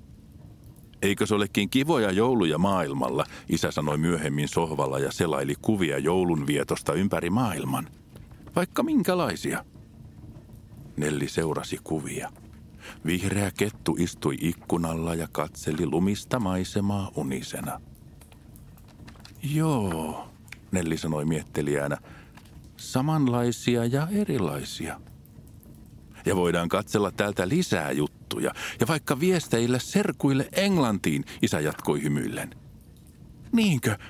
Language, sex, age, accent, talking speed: Finnish, male, 50-69, native, 90 wpm